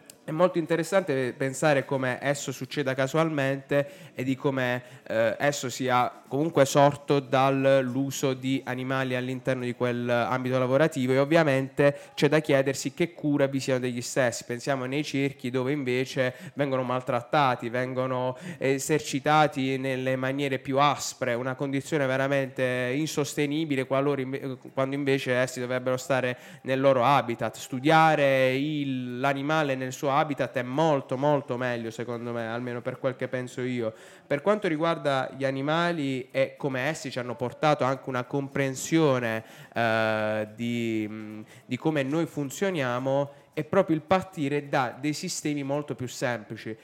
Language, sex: Italian, male